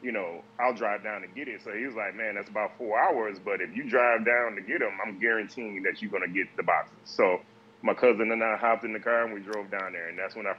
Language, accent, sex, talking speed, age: English, American, male, 295 wpm, 30-49